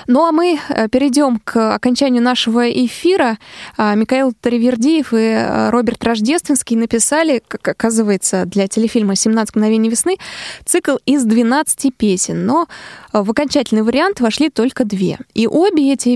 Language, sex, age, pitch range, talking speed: Russian, female, 20-39, 210-255 Hz, 130 wpm